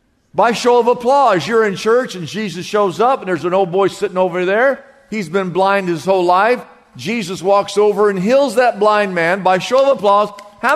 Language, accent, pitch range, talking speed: English, American, 195-280 Hz, 210 wpm